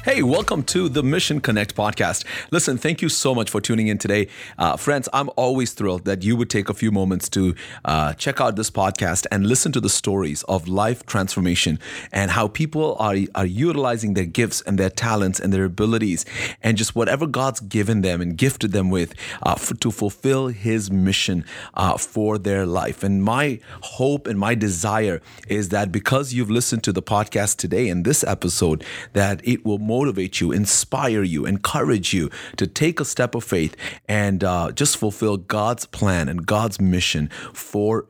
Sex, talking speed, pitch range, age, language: male, 190 wpm, 95-125 Hz, 30-49, English